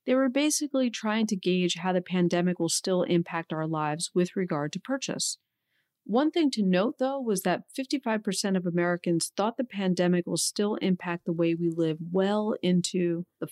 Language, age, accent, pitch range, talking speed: English, 40-59, American, 170-205 Hz, 180 wpm